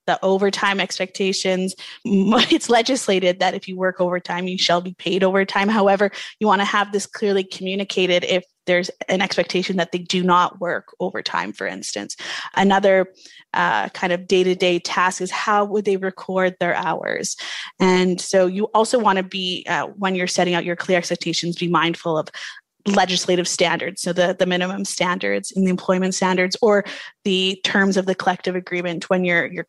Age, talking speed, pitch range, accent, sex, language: 20-39, 175 wpm, 180-200 Hz, American, female, English